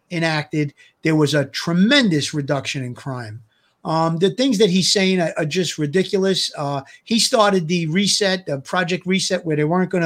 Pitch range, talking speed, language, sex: 165-205 Hz, 180 wpm, English, male